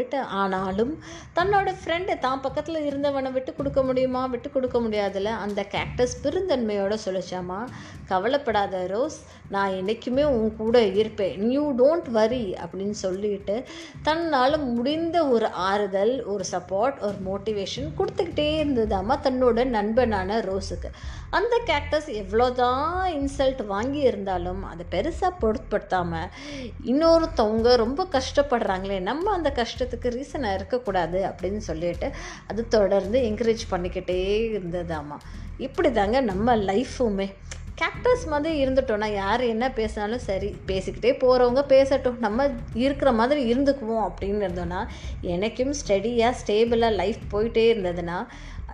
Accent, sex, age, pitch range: native, female, 20-39, 205-275 Hz